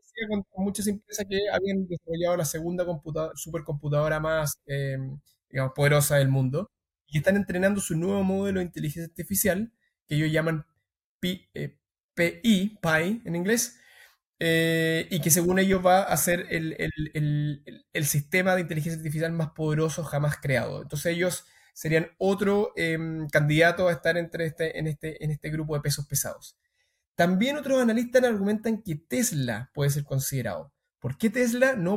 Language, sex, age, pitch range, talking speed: Spanish, male, 20-39, 155-200 Hz, 160 wpm